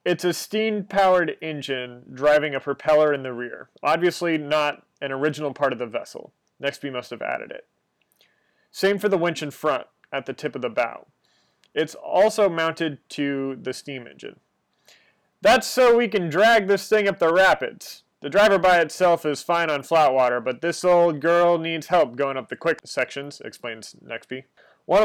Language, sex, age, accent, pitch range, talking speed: English, male, 30-49, American, 135-175 Hz, 180 wpm